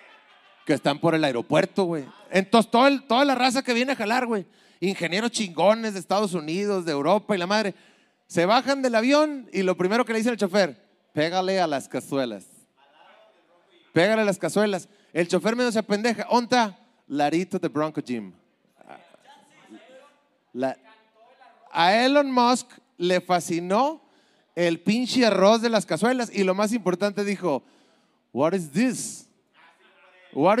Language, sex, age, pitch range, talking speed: Spanish, male, 30-49, 175-235 Hz, 150 wpm